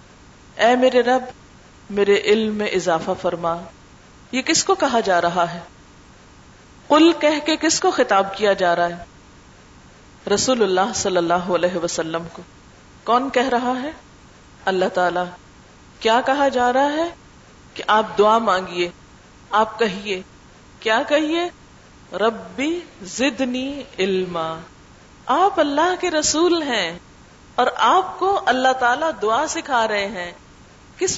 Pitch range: 195-290 Hz